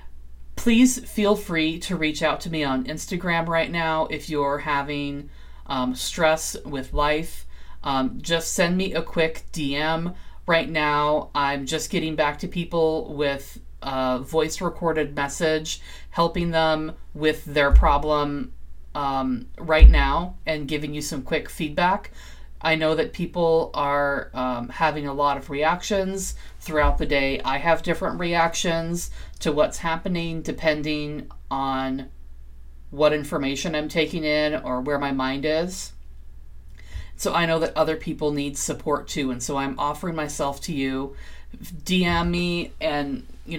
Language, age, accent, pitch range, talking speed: English, 30-49, American, 135-165 Hz, 145 wpm